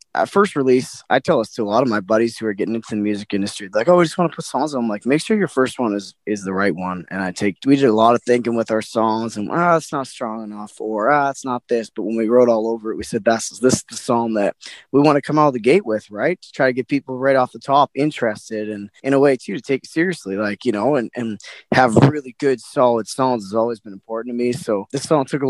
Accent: American